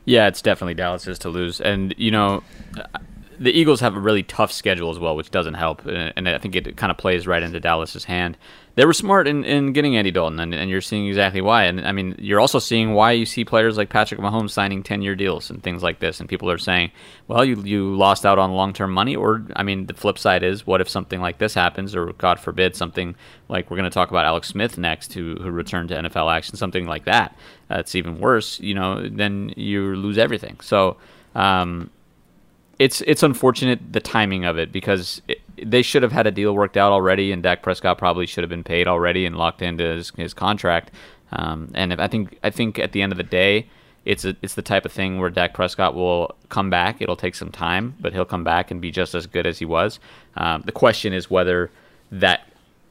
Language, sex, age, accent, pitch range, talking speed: English, male, 30-49, American, 90-105 Hz, 235 wpm